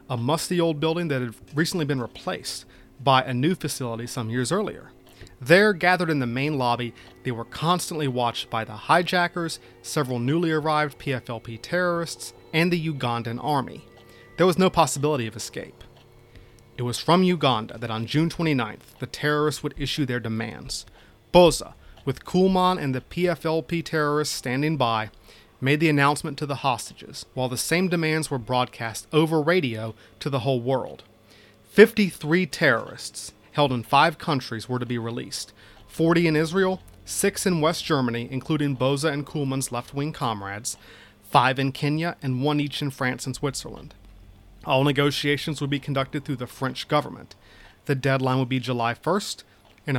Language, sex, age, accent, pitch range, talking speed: English, male, 30-49, American, 115-155 Hz, 160 wpm